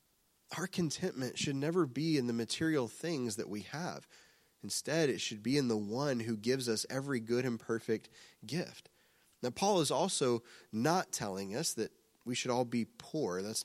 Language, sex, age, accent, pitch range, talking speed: English, male, 30-49, American, 115-170 Hz, 180 wpm